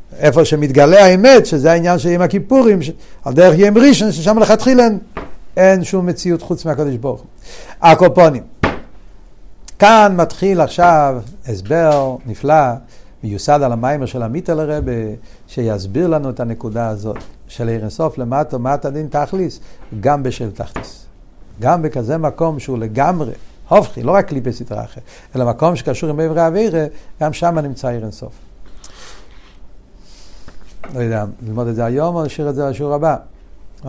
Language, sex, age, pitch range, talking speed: Hebrew, male, 60-79, 115-160 Hz, 145 wpm